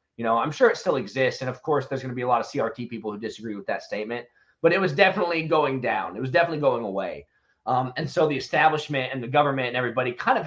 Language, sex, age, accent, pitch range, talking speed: English, male, 30-49, American, 115-145 Hz, 270 wpm